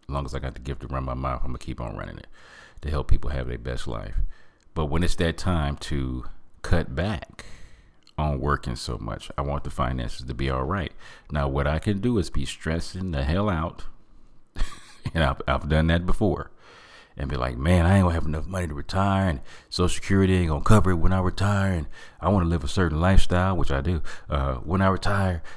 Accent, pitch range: American, 70-85 Hz